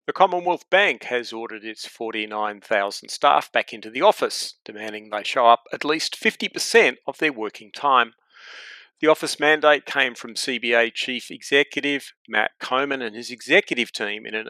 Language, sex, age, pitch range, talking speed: English, male, 40-59, 110-175 Hz, 160 wpm